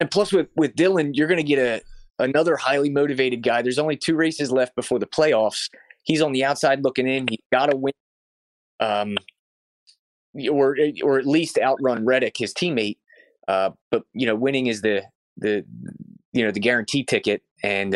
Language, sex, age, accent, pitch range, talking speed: English, male, 20-39, American, 110-145 Hz, 185 wpm